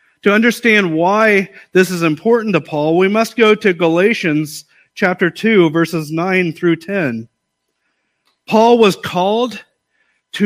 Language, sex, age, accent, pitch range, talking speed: English, male, 40-59, American, 170-215 Hz, 130 wpm